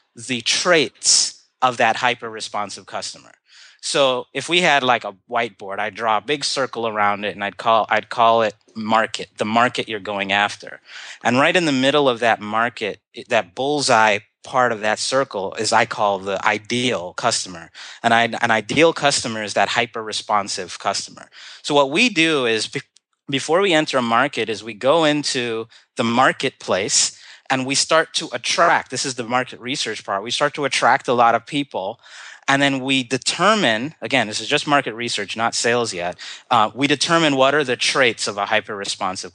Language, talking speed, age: English, 180 wpm, 30-49